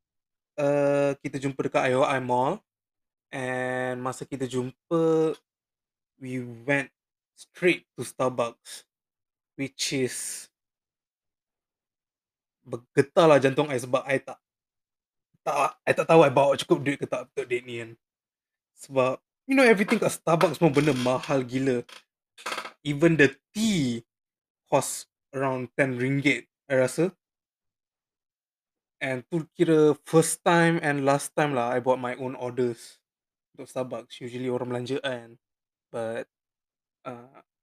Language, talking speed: Malay, 120 wpm